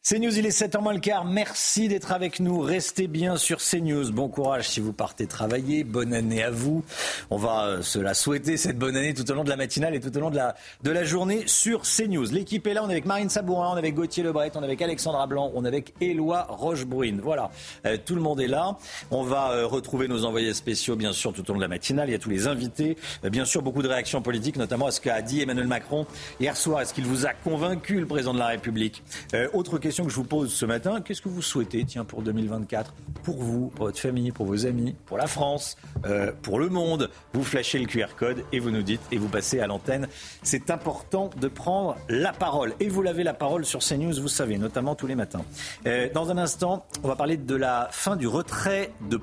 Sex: male